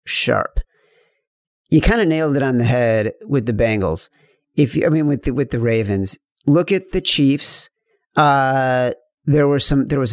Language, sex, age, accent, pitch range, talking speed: English, male, 40-59, American, 130-160 Hz, 170 wpm